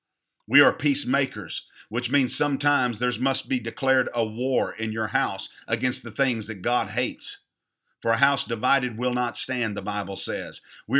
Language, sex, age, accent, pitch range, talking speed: English, male, 50-69, American, 115-140 Hz, 175 wpm